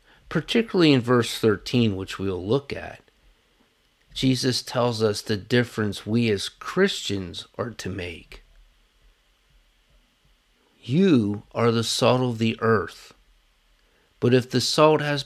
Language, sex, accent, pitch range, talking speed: English, male, American, 100-135 Hz, 125 wpm